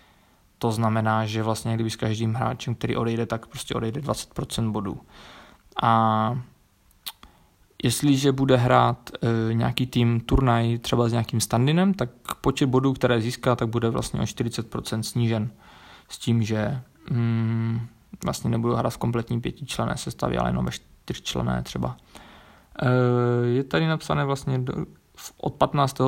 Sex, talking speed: male, 145 wpm